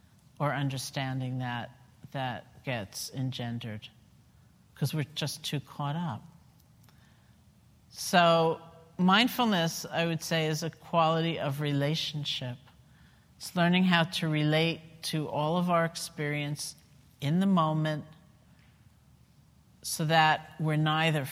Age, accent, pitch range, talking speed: 50-69, American, 140-165 Hz, 110 wpm